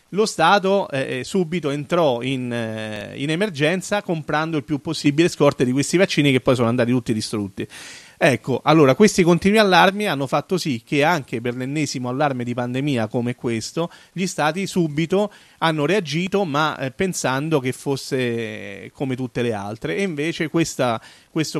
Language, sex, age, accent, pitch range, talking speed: Italian, male, 40-59, native, 125-160 Hz, 155 wpm